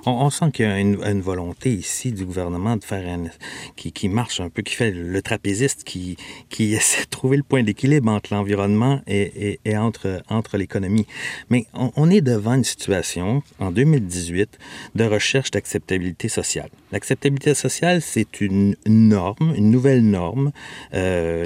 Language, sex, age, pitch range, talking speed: French, male, 50-69, 95-130 Hz, 170 wpm